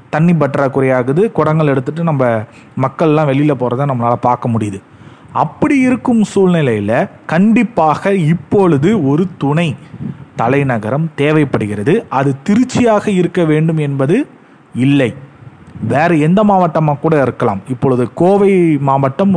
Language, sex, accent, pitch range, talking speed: Tamil, male, native, 135-180 Hz, 105 wpm